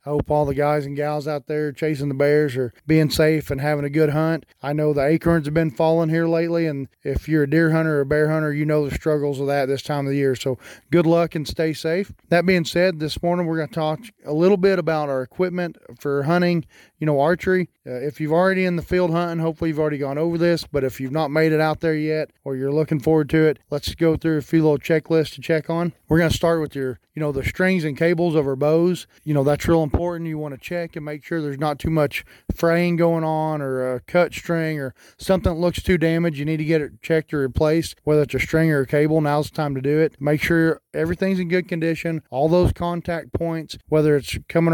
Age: 30-49